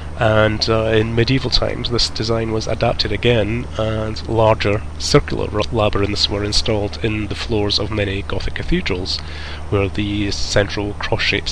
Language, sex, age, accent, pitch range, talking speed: English, male, 30-49, British, 85-110 Hz, 140 wpm